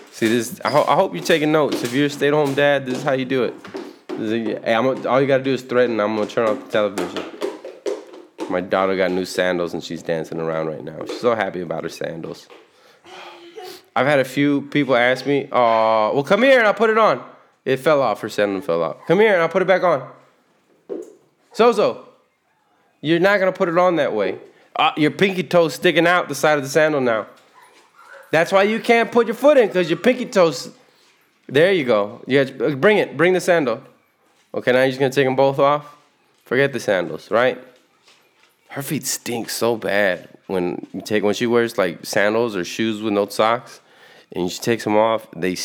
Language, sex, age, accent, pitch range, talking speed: English, male, 20-39, American, 100-160 Hz, 220 wpm